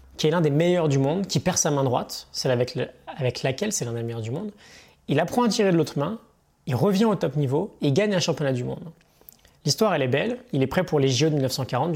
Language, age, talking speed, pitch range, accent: French, 20-39, 270 wpm, 125-165 Hz, French